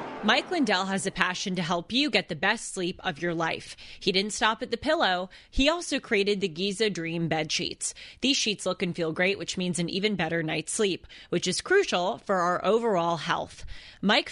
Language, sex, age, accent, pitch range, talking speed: English, female, 20-39, American, 170-220 Hz, 210 wpm